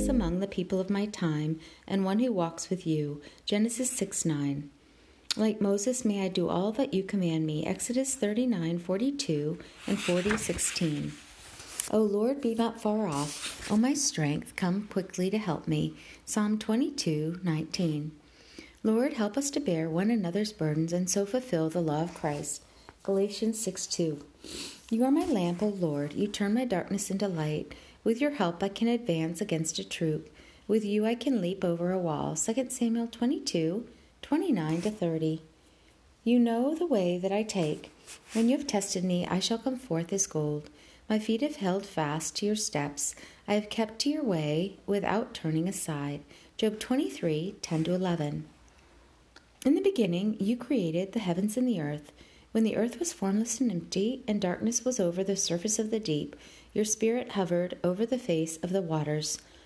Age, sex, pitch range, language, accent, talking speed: 50-69, female, 160-225 Hz, English, American, 180 wpm